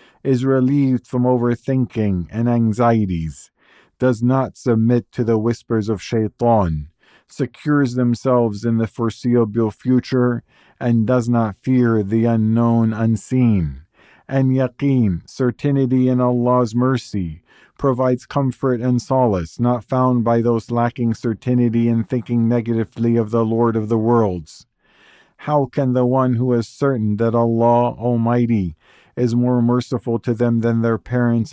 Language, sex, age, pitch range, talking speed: English, male, 50-69, 115-130 Hz, 135 wpm